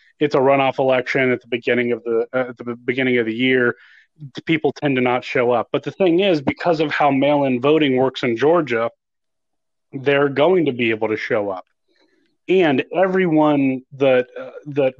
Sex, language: male, English